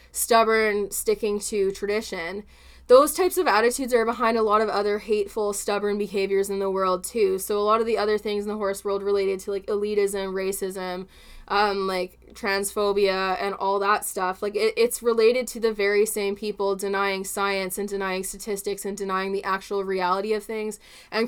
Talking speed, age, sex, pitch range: 185 wpm, 20-39, female, 195-225 Hz